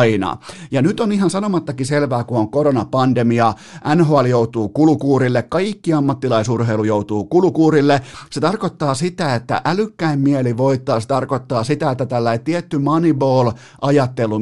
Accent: native